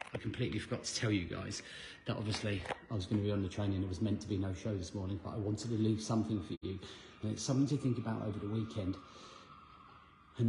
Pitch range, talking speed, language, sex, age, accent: 100-125 Hz, 255 wpm, English, male, 30-49, British